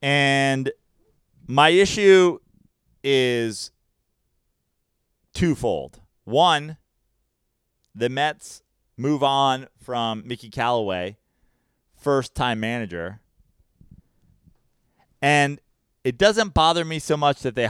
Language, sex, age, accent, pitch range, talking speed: English, male, 30-49, American, 120-165 Hz, 85 wpm